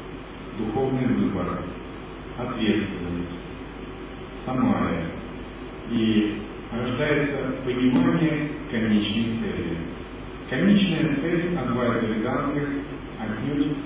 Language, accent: Russian, native